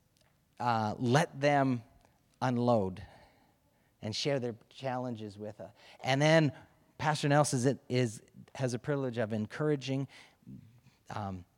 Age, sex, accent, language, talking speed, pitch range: 40-59, male, American, English, 115 wpm, 120-160 Hz